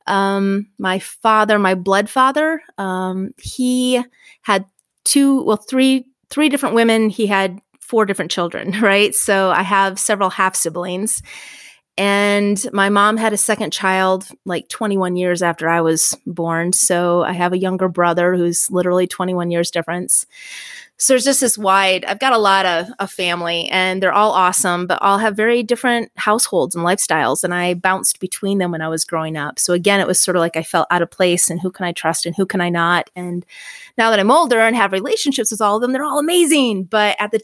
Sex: female